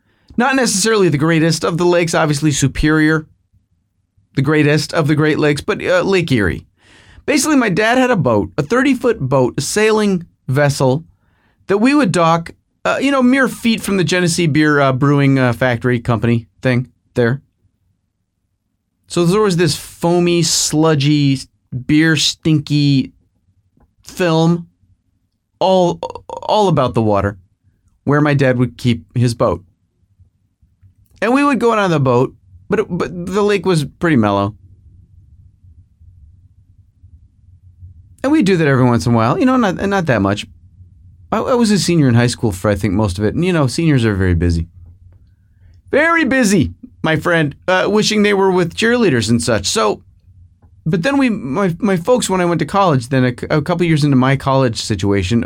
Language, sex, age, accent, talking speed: English, male, 30-49, American, 170 wpm